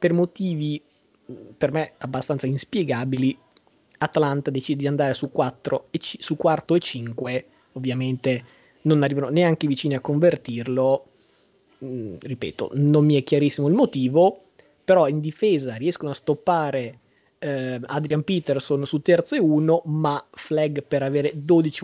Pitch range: 130-155 Hz